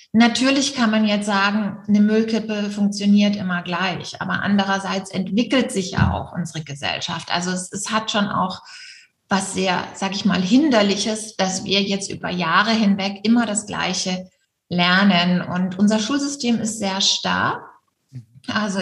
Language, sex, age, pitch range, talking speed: German, female, 20-39, 190-220 Hz, 150 wpm